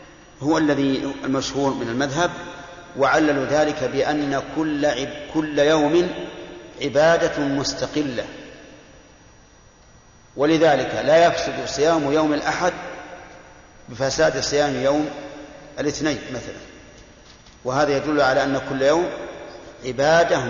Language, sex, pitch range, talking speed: Arabic, male, 140-165 Hz, 90 wpm